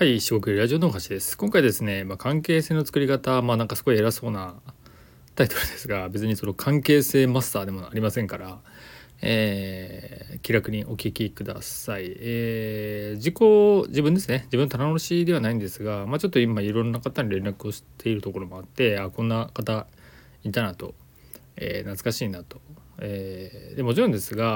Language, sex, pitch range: Japanese, male, 95-130 Hz